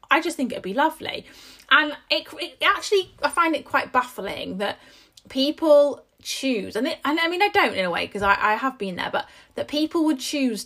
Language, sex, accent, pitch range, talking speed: English, female, British, 220-300 Hz, 220 wpm